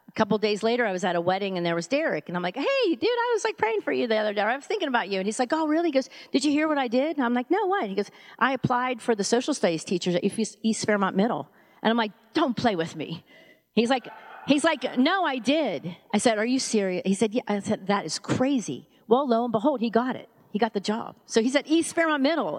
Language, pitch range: English, 195-260 Hz